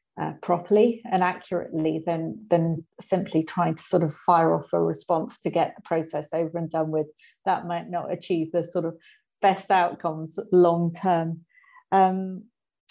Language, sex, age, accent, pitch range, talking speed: English, female, 50-69, British, 170-200 Hz, 165 wpm